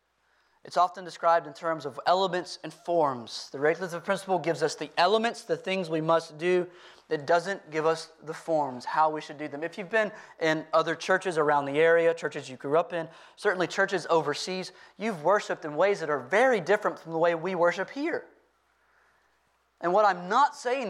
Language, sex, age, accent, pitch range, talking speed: English, male, 30-49, American, 160-205 Hz, 195 wpm